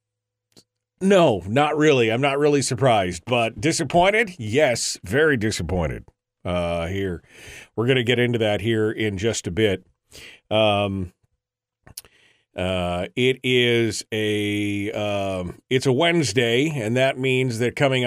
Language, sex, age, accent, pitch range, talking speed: English, male, 40-59, American, 105-140 Hz, 130 wpm